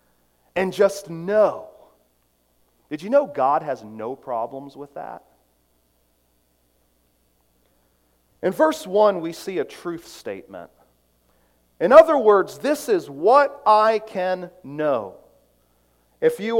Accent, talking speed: American, 110 wpm